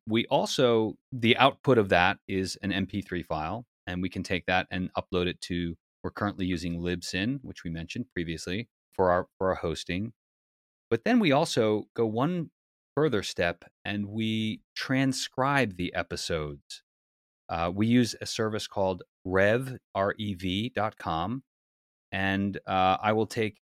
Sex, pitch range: male, 90-110 Hz